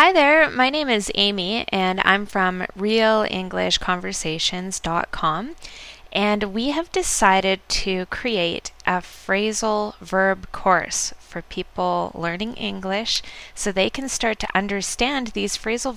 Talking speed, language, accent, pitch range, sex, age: 120 wpm, English, American, 180-220 Hz, female, 10-29